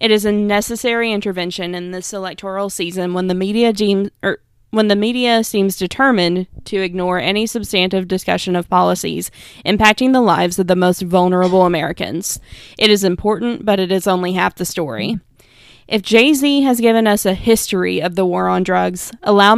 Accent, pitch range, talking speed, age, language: American, 180-215 Hz, 160 wpm, 20-39, English